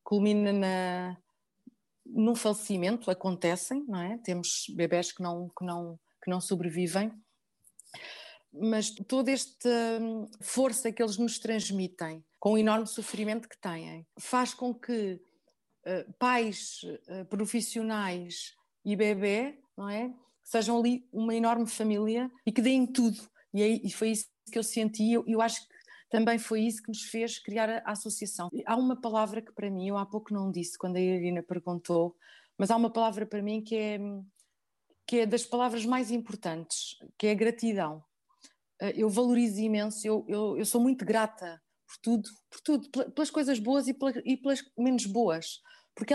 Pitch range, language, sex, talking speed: 200-240 Hz, Portuguese, female, 165 wpm